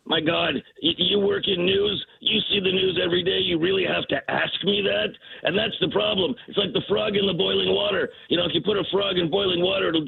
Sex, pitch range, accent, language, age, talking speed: male, 180-215 Hz, American, English, 50-69, 250 wpm